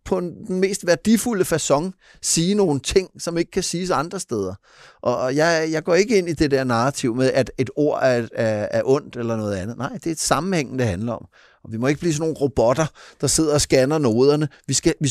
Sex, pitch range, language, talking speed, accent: male, 110-140 Hz, Danish, 220 wpm, native